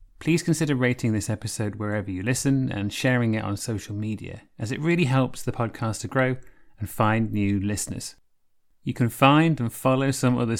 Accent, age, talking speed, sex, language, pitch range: British, 30-49, 185 wpm, male, English, 105-130 Hz